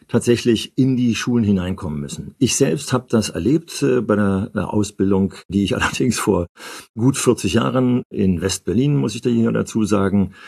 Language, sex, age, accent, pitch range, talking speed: German, male, 50-69, German, 100-125 Hz, 180 wpm